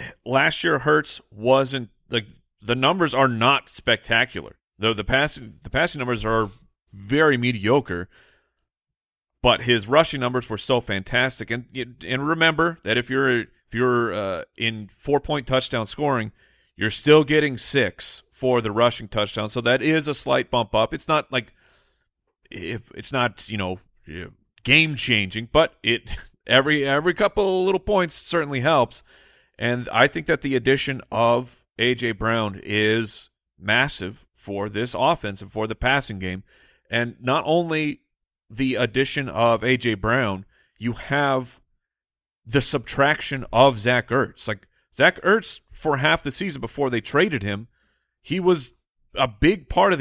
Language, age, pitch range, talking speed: English, 40-59, 110-145 Hz, 150 wpm